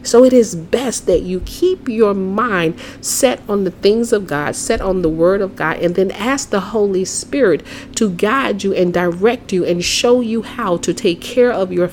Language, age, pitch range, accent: English, 40-59, 185-240 Hz, American